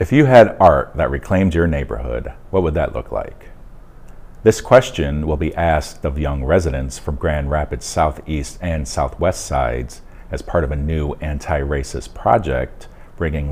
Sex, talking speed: male, 160 wpm